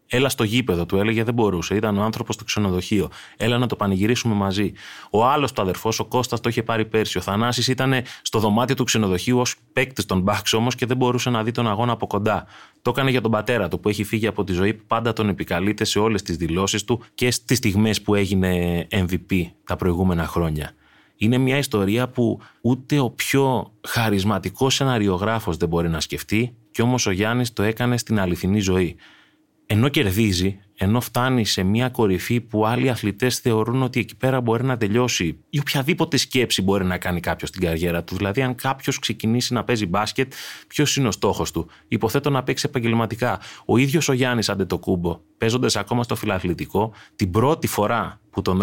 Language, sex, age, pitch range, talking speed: Greek, male, 30-49, 95-125 Hz, 195 wpm